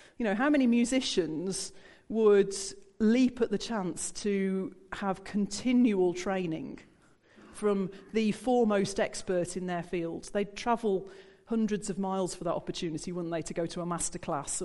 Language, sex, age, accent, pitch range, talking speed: English, female, 40-59, British, 180-225 Hz, 150 wpm